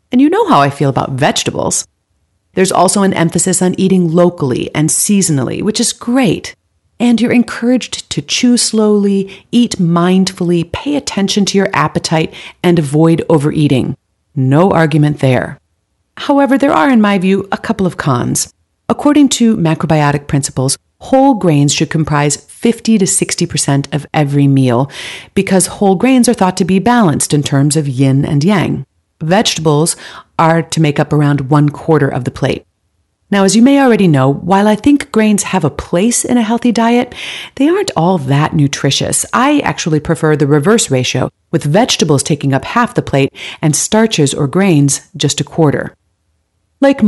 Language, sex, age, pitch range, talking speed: English, female, 40-59, 145-205 Hz, 165 wpm